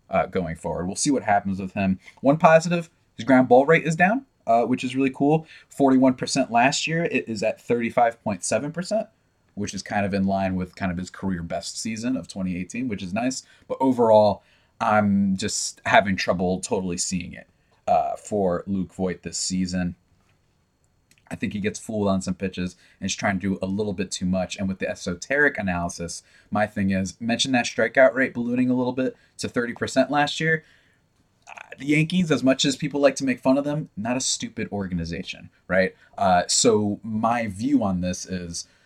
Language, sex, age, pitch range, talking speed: English, male, 30-49, 95-130 Hz, 190 wpm